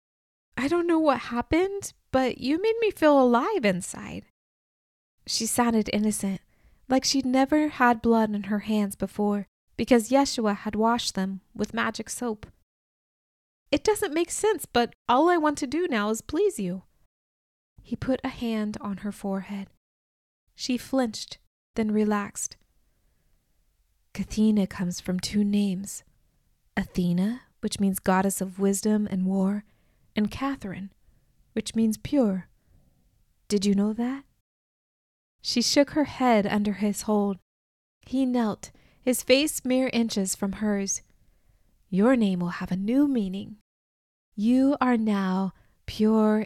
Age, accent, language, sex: 20-39, American, English, female